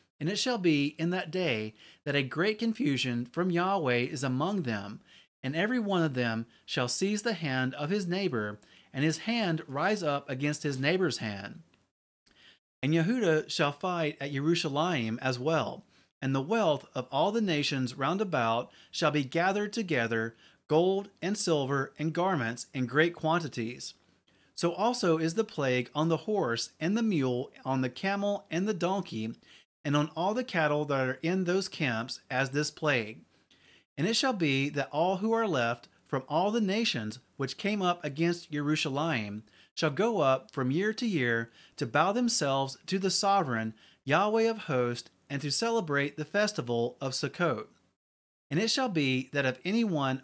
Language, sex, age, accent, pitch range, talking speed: English, male, 30-49, American, 130-185 Hz, 175 wpm